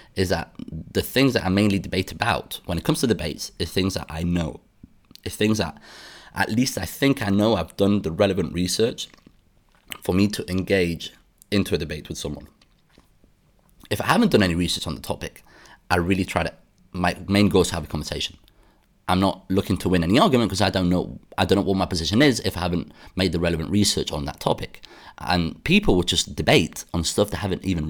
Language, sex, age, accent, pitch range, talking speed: English, male, 30-49, British, 85-100 Hz, 215 wpm